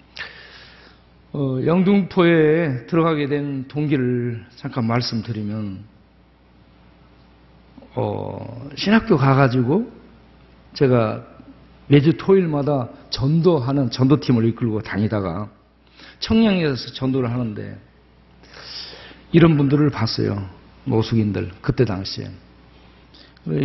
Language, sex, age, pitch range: Korean, male, 50-69, 105-155 Hz